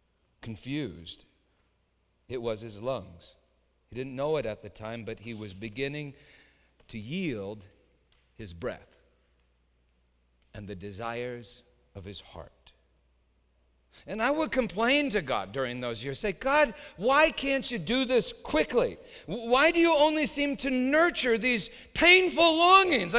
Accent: American